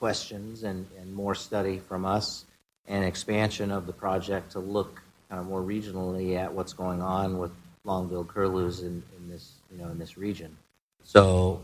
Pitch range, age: 90-105 Hz, 40-59